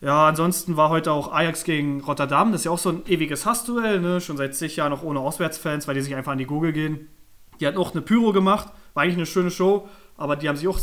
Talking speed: 265 wpm